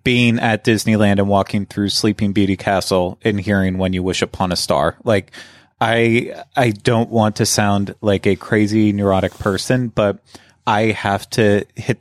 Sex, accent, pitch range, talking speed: male, American, 95-110 Hz, 170 wpm